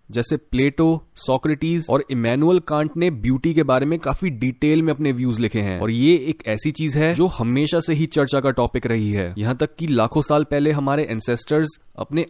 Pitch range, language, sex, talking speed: 125-170 Hz, Hindi, male, 205 wpm